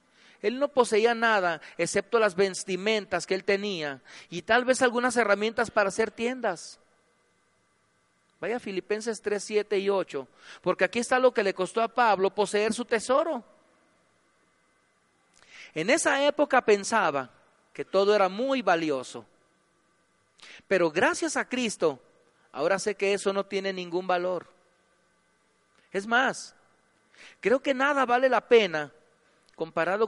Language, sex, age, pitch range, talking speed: Spanish, male, 40-59, 185-255 Hz, 130 wpm